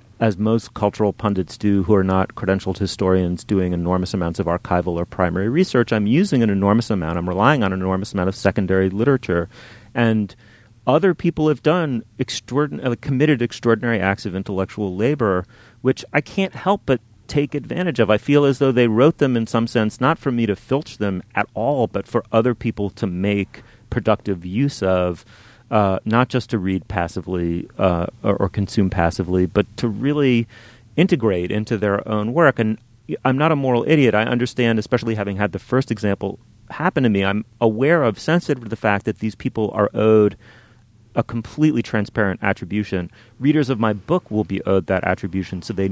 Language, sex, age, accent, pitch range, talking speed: English, male, 30-49, American, 95-120 Hz, 185 wpm